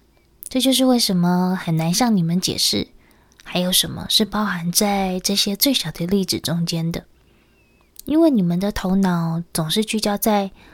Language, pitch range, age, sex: Chinese, 185-235 Hz, 20-39, female